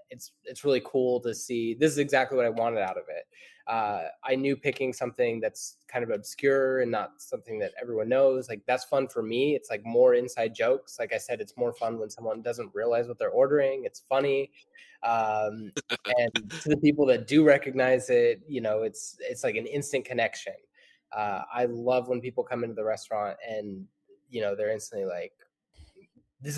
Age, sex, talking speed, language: 20-39, male, 200 wpm, English